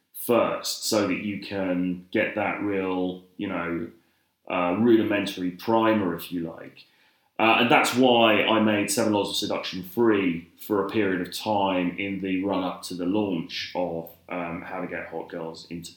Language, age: English, 30-49